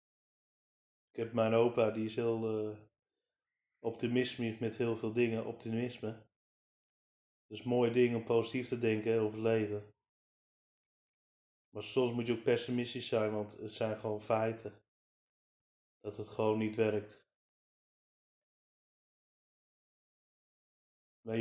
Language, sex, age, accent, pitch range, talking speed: Dutch, male, 30-49, Dutch, 110-130 Hz, 125 wpm